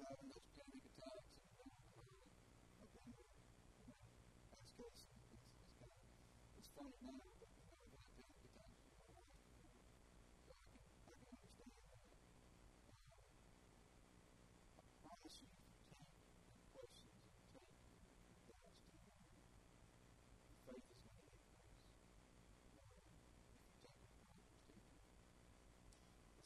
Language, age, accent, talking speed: English, 50-69, American, 30 wpm